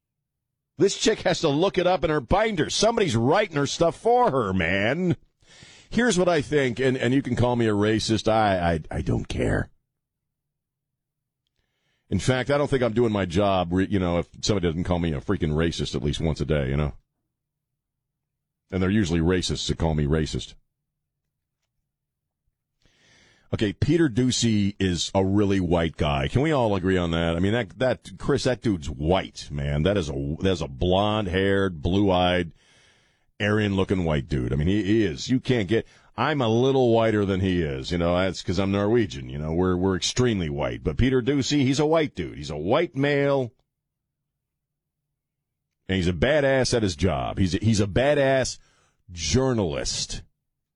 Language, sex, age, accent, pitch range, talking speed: English, male, 50-69, American, 90-135 Hz, 185 wpm